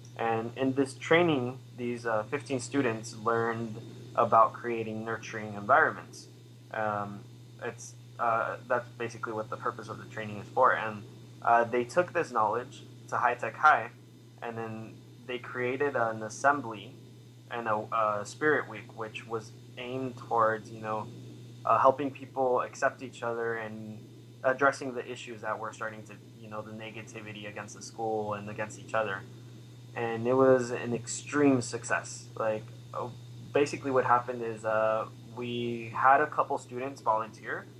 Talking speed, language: 150 wpm, English